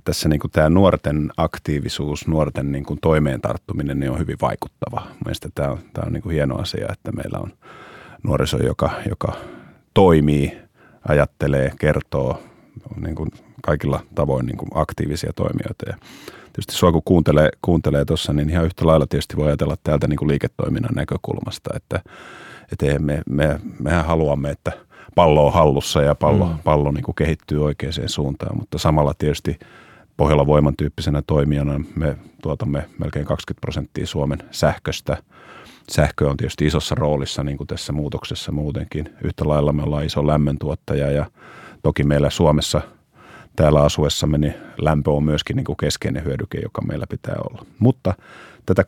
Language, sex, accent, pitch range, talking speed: Finnish, male, native, 70-75 Hz, 145 wpm